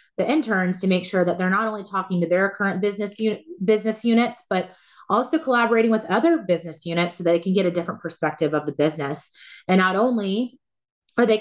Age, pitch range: 30-49, 175-220 Hz